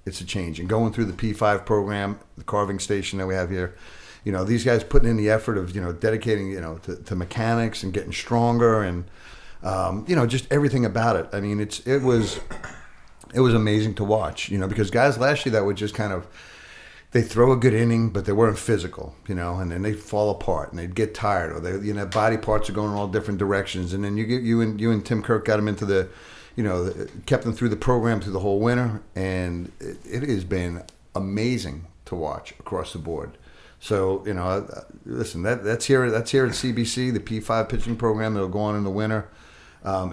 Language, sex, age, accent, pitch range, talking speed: English, male, 50-69, American, 95-115 Hz, 235 wpm